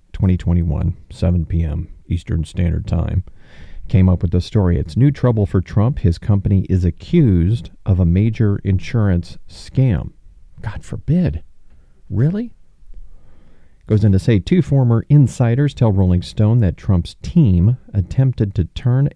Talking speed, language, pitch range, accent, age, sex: 140 wpm, English, 90-125 Hz, American, 40-59, male